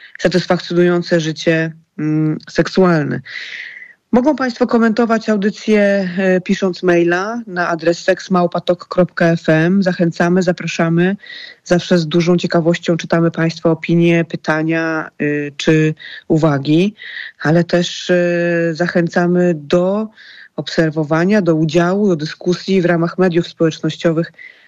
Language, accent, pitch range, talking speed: Polish, native, 160-195 Hz, 100 wpm